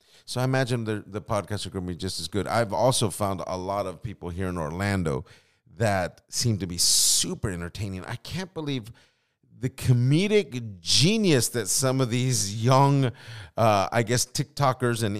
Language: English